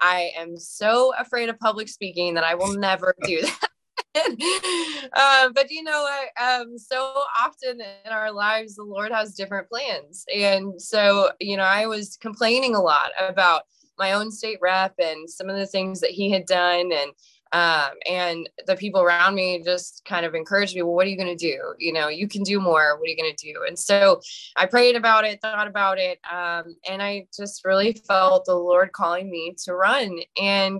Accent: American